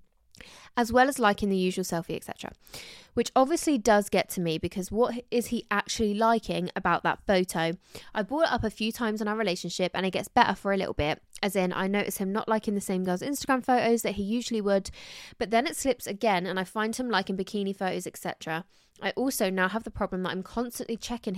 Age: 20-39